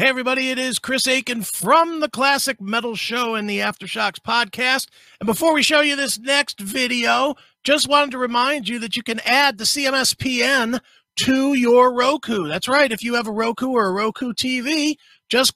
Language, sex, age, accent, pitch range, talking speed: English, male, 40-59, American, 195-265 Hz, 190 wpm